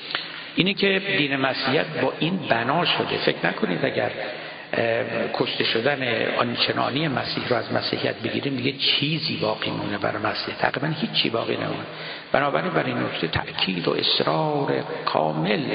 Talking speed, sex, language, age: 135 wpm, male, Persian, 60-79